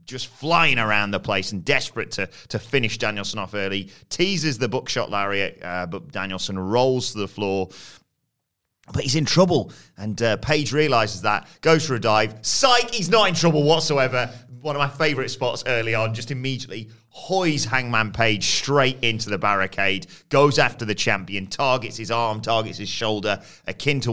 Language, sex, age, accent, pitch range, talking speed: English, male, 30-49, British, 100-130 Hz, 175 wpm